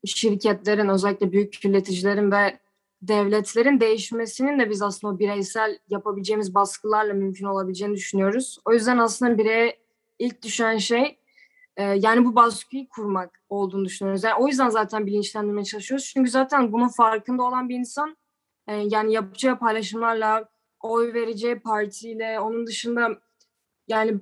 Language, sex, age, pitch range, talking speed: Turkish, female, 20-39, 205-240 Hz, 125 wpm